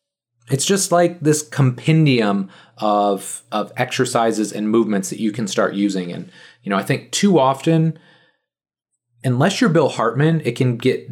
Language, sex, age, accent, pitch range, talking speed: English, male, 30-49, American, 110-145 Hz, 155 wpm